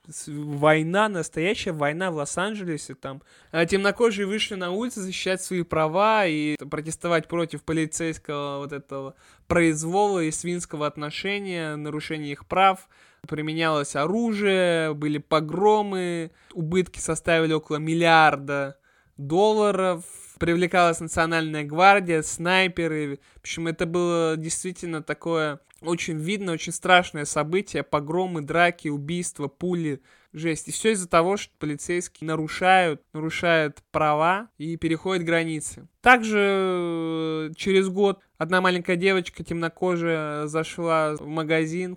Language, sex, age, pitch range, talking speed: Russian, male, 20-39, 155-185 Hz, 110 wpm